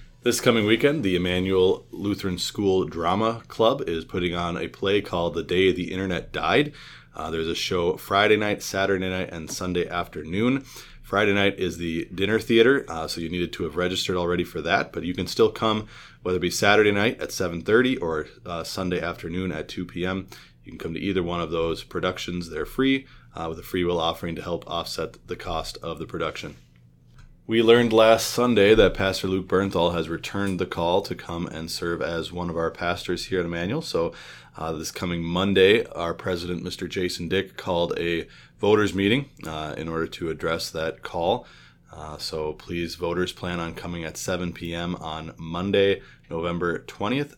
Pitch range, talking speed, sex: 85-100 Hz, 190 wpm, male